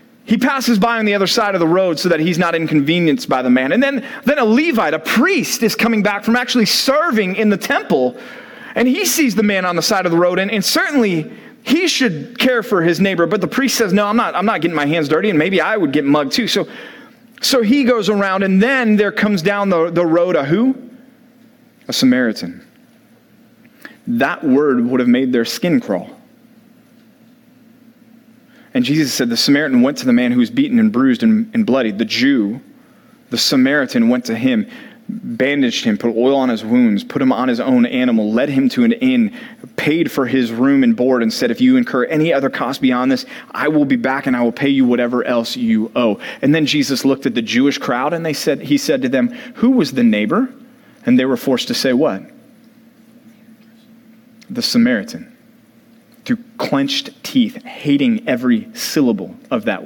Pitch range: 170-245 Hz